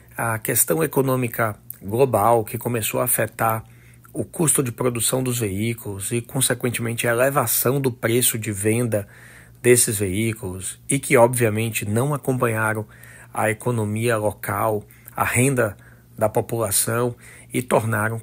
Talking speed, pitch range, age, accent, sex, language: 125 wpm, 110-125 Hz, 40-59, Brazilian, male, Portuguese